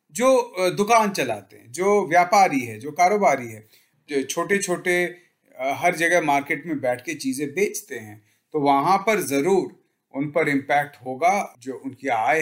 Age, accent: 40-59, native